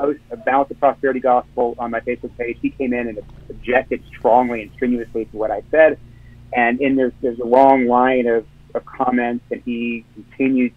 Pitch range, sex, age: 110-130 Hz, male, 40-59